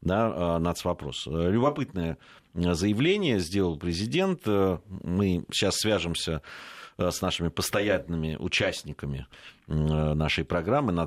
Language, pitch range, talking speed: Russian, 80-100 Hz, 75 wpm